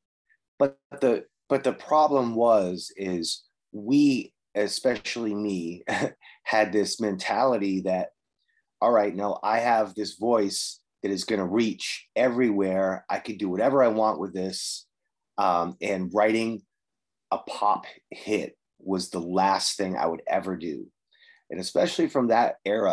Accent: American